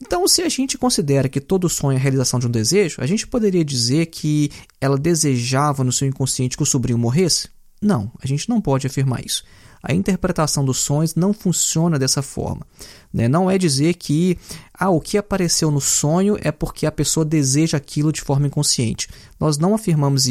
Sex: male